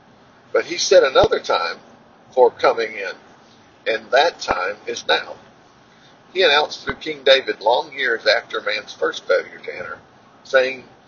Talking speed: 145 wpm